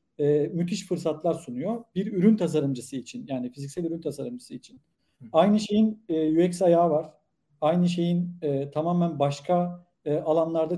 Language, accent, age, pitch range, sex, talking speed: Turkish, native, 50-69, 150-195 Hz, male, 120 wpm